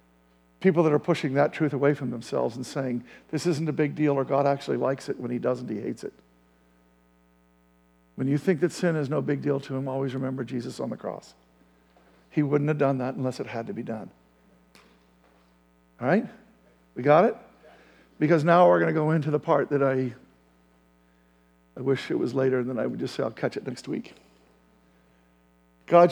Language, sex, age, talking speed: English, male, 50-69, 200 wpm